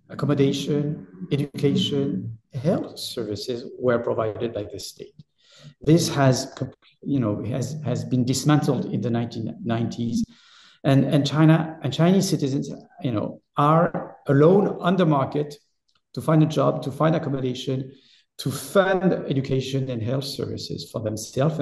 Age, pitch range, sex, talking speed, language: 50-69, 125-165 Hz, male, 135 wpm, English